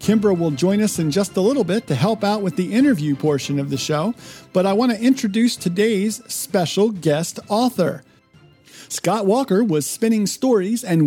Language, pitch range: English, 150-210 Hz